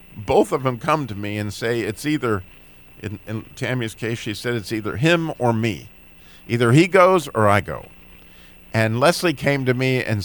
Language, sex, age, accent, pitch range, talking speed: English, male, 50-69, American, 105-130 Hz, 195 wpm